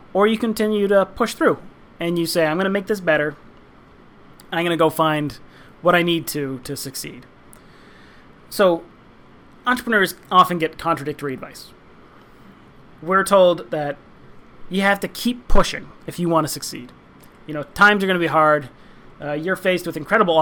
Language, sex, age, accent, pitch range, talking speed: English, male, 30-49, American, 150-185 Hz, 170 wpm